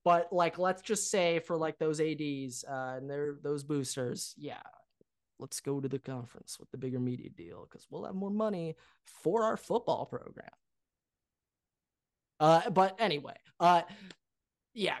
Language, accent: English, American